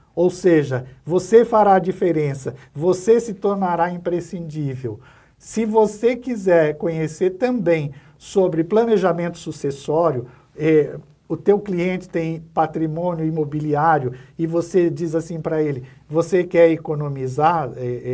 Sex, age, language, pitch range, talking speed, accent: male, 60-79, Portuguese, 150-195 Hz, 110 wpm, Brazilian